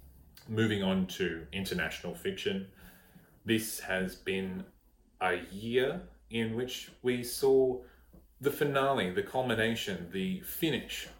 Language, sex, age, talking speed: English, male, 30-49, 105 wpm